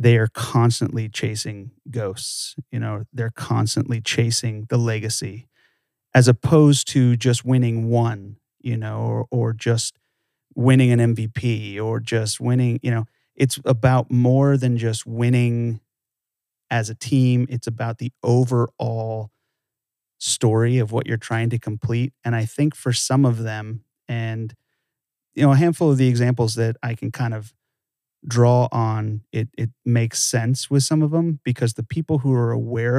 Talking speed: 160 wpm